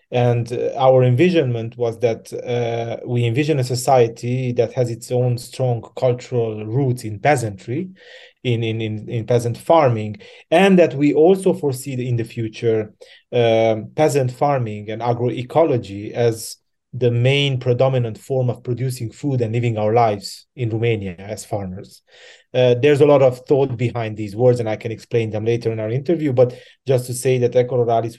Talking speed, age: 165 wpm, 30-49